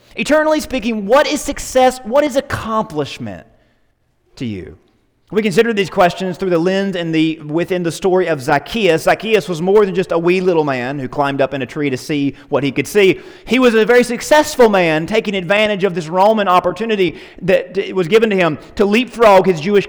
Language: English